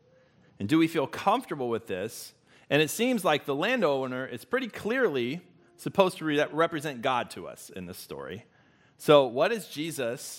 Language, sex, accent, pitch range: English, male, American, 115-155 Hz